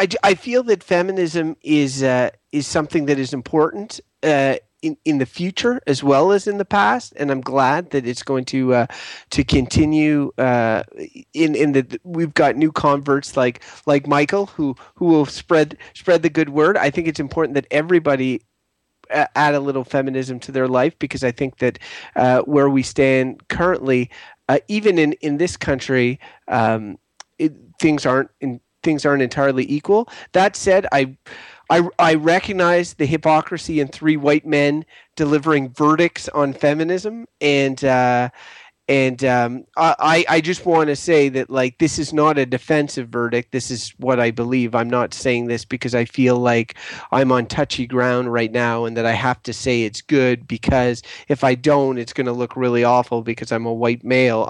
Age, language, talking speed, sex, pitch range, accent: 30-49, English, 180 wpm, male, 125-155 Hz, American